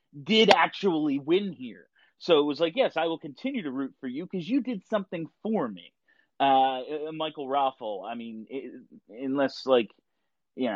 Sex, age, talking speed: male, 30-49, 175 wpm